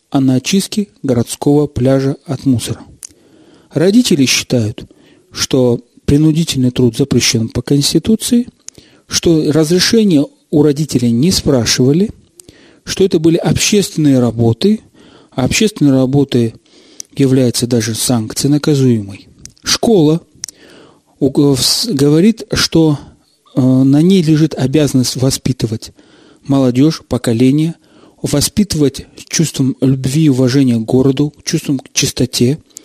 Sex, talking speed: male, 95 wpm